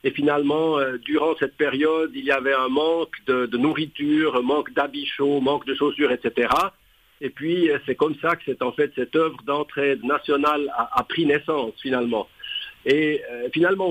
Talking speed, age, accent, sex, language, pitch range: 190 wpm, 60-79, French, male, French, 150-180 Hz